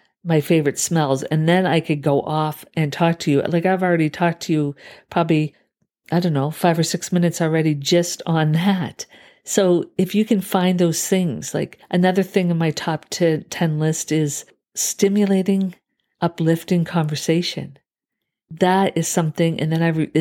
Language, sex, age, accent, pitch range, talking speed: English, female, 50-69, American, 150-180 Hz, 170 wpm